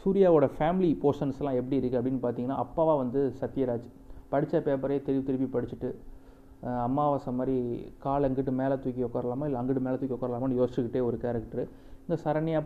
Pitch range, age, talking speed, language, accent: 125-160 Hz, 30-49, 150 wpm, Tamil, native